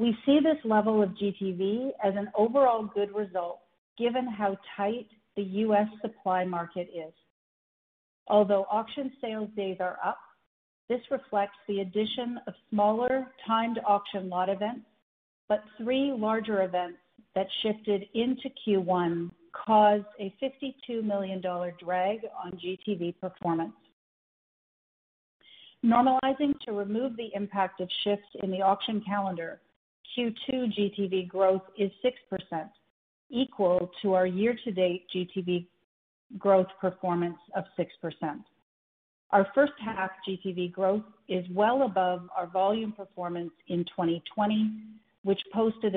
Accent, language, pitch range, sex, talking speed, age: American, English, 180-220 Hz, female, 120 wpm, 50-69